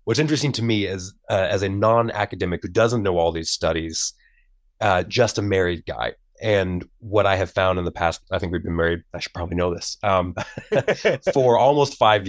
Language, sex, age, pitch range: English, male, 30-49, 85-105 Hz